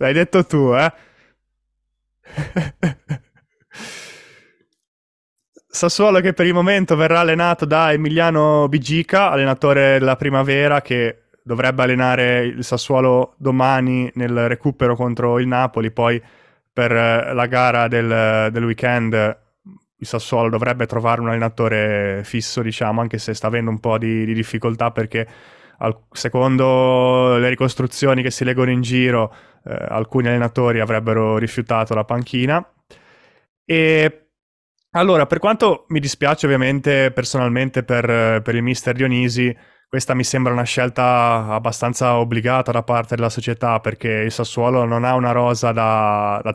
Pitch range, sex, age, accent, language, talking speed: 115-135 Hz, male, 20-39, native, Italian, 130 wpm